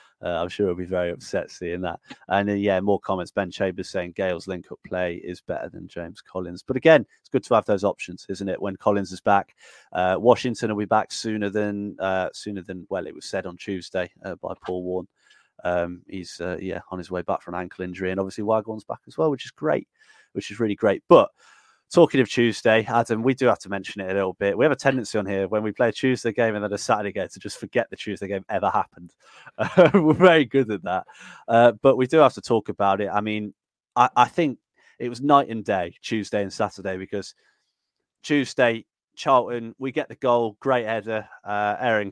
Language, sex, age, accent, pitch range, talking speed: English, male, 30-49, British, 95-130 Hz, 230 wpm